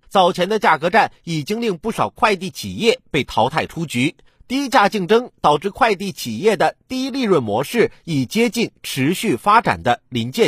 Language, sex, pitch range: Chinese, male, 160-235 Hz